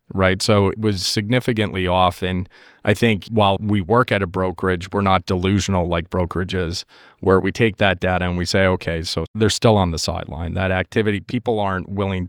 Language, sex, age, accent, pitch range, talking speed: English, male, 40-59, American, 95-110 Hz, 195 wpm